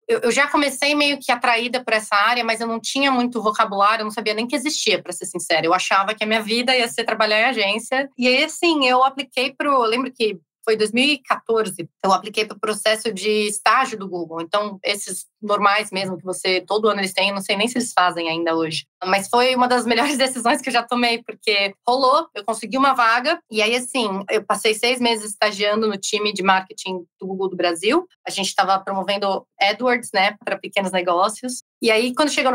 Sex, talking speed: female, 220 wpm